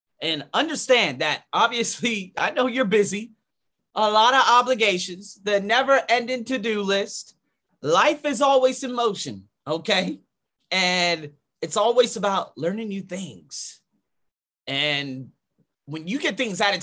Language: English